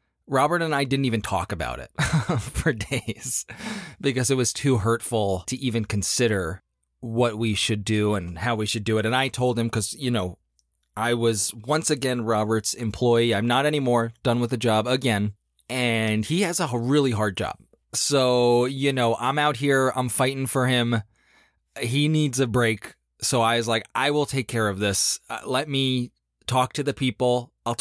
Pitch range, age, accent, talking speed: 110-135 Hz, 20-39, American, 190 wpm